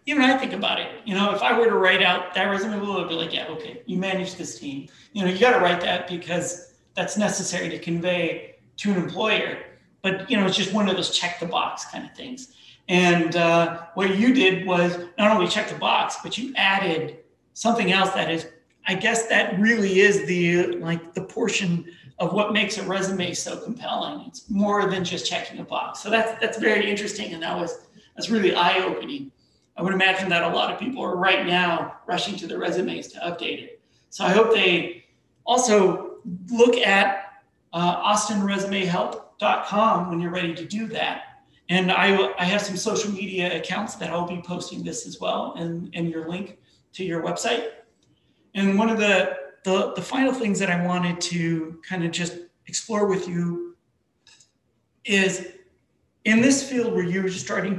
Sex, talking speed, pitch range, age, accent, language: male, 195 wpm, 175-210 Hz, 40-59, American, English